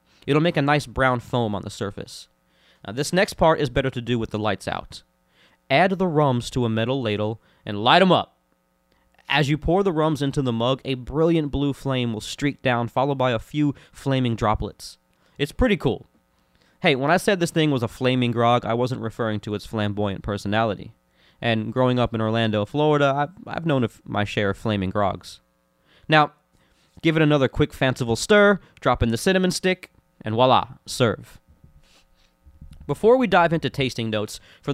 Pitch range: 105-145 Hz